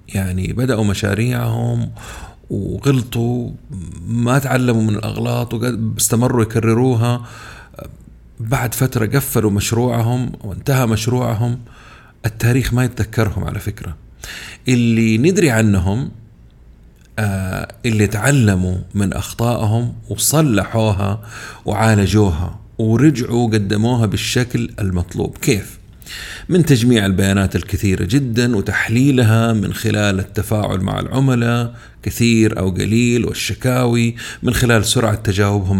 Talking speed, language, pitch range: 90 wpm, Arabic, 100-120 Hz